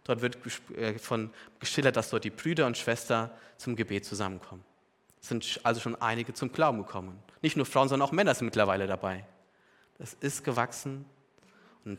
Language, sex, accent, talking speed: German, male, German, 165 wpm